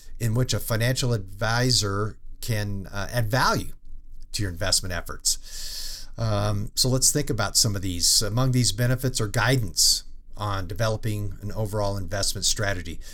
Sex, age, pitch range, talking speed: male, 50-69, 90-115 Hz, 145 wpm